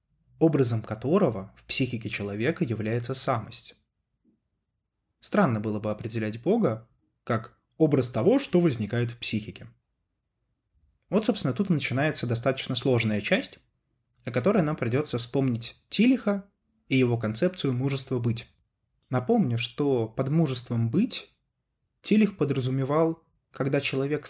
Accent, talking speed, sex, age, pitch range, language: native, 115 wpm, male, 20-39, 120-165 Hz, Russian